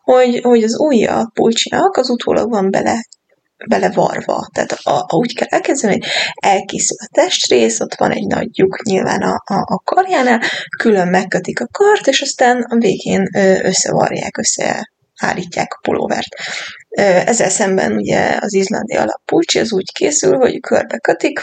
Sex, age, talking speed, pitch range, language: female, 20-39, 150 wpm, 195-250 Hz, Hungarian